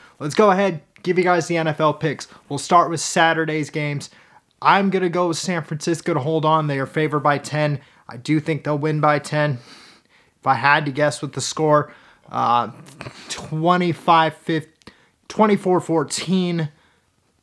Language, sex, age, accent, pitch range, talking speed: English, male, 30-49, American, 140-170 Hz, 160 wpm